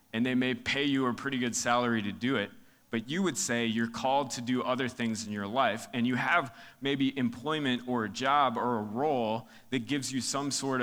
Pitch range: 110-140 Hz